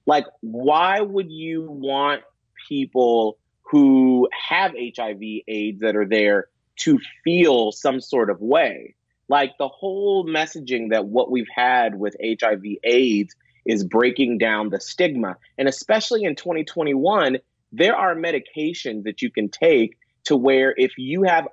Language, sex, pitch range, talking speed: English, male, 115-160 Hz, 140 wpm